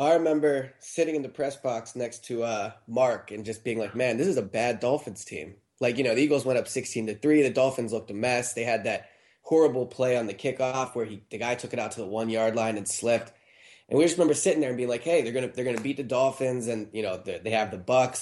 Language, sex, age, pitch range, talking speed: English, male, 20-39, 115-135 Hz, 280 wpm